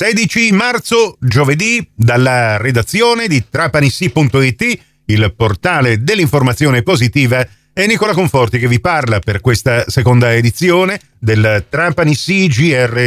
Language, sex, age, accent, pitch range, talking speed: Italian, male, 40-59, native, 130-185 Hz, 110 wpm